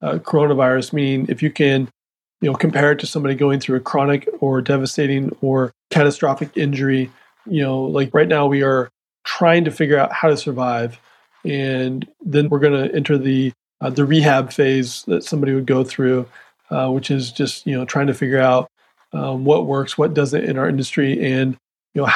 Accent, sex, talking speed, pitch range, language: American, male, 195 wpm, 135-150 Hz, English